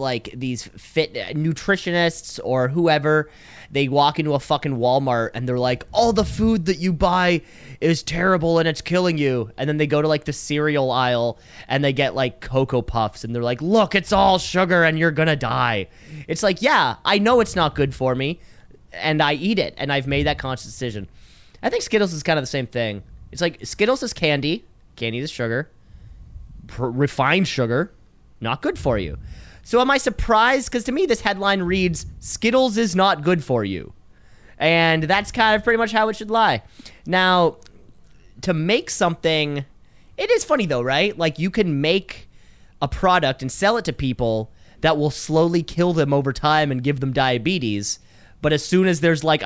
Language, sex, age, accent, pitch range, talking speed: English, male, 20-39, American, 130-185 Hz, 195 wpm